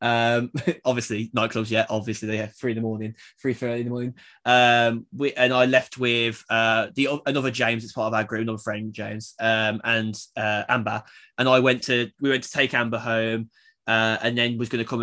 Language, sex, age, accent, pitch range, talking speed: English, male, 10-29, British, 110-130 Hz, 215 wpm